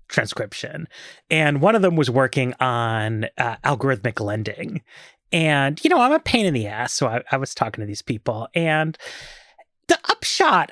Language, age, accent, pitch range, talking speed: English, 30-49, American, 125-185 Hz, 175 wpm